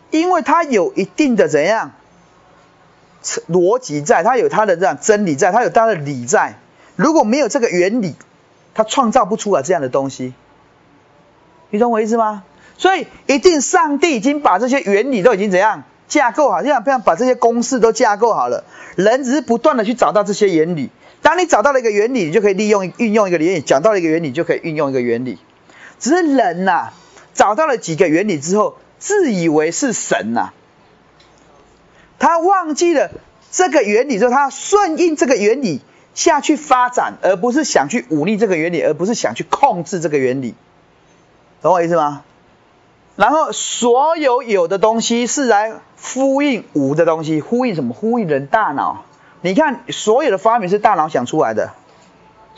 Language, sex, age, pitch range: Chinese, male, 30-49, 180-290 Hz